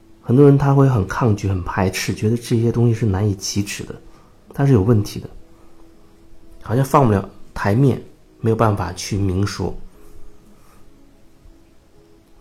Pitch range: 95-120 Hz